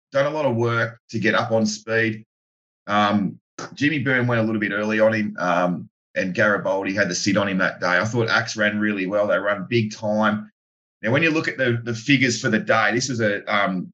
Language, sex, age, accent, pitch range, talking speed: English, male, 30-49, Australian, 100-115 Hz, 235 wpm